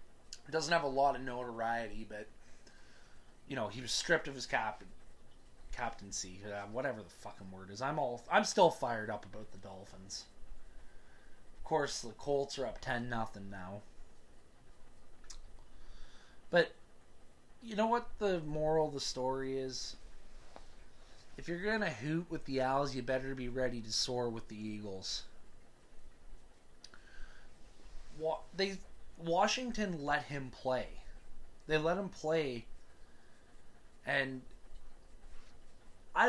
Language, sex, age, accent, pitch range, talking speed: English, male, 20-39, American, 105-145 Hz, 130 wpm